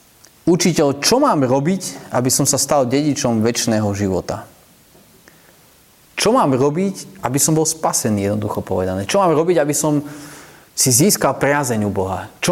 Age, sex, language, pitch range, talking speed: 30-49, male, Slovak, 105-140 Hz, 150 wpm